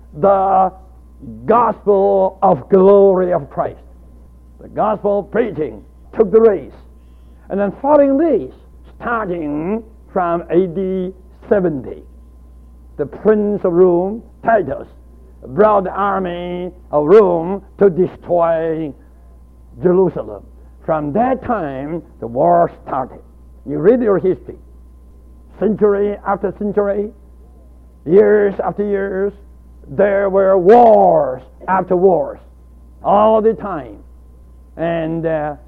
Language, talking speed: English, 100 wpm